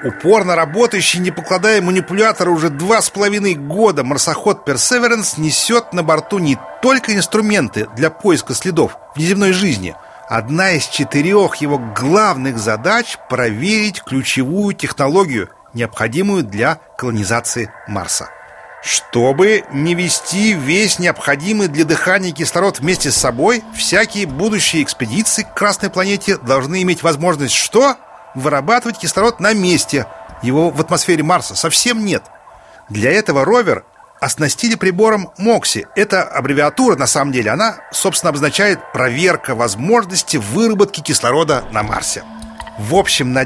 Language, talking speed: Russian, 125 wpm